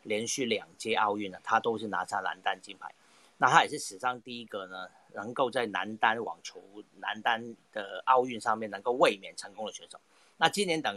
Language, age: Chinese, 40-59